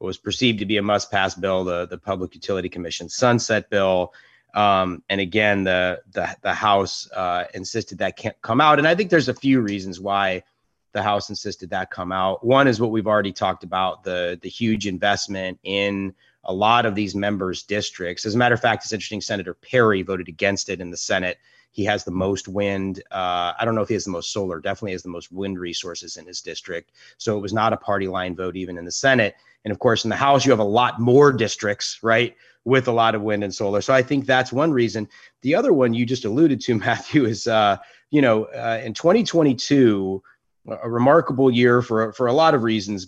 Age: 30-49